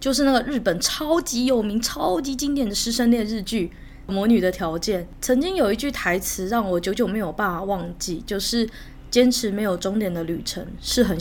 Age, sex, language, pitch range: 20-39, female, Chinese, 180-235 Hz